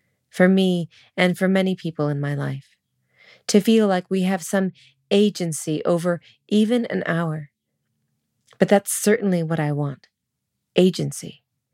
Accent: American